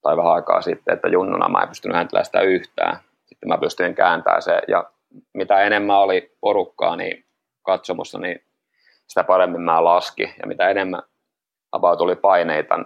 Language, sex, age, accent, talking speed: Finnish, male, 30-49, native, 155 wpm